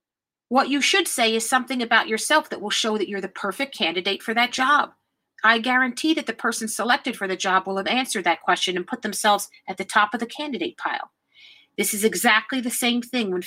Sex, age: female, 40-59